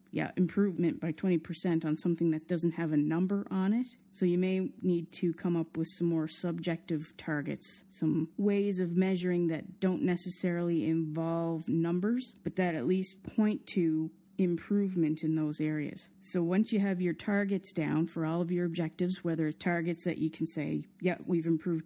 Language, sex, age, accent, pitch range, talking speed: English, female, 30-49, American, 165-185 Hz, 180 wpm